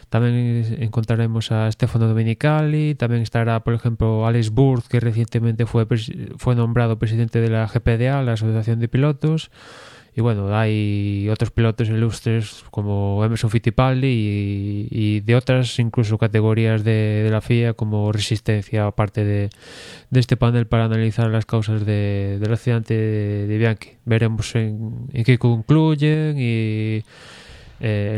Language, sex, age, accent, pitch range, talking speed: Spanish, male, 20-39, Spanish, 110-120 Hz, 145 wpm